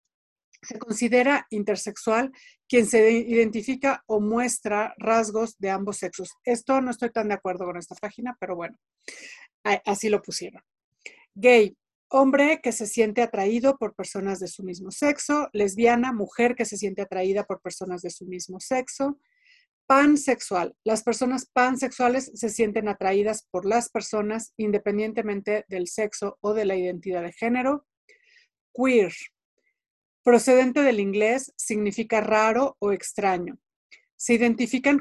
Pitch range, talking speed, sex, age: 200-250 Hz, 135 wpm, female, 50-69